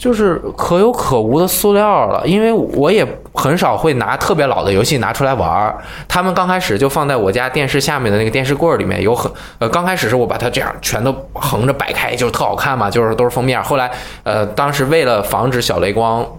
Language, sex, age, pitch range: Chinese, male, 20-39, 120-155 Hz